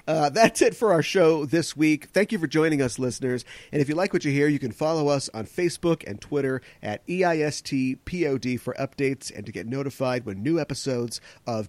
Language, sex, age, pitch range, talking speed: English, male, 40-59, 115-175 Hz, 210 wpm